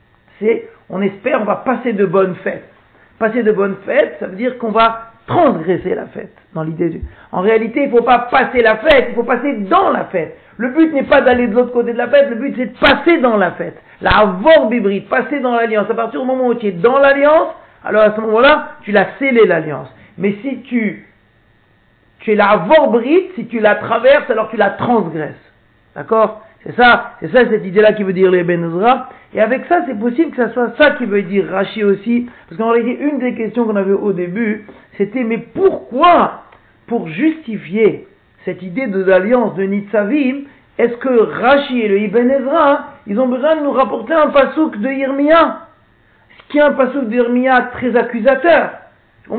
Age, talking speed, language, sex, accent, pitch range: 50-69, 205 wpm, French, male, French, 205-270 Hz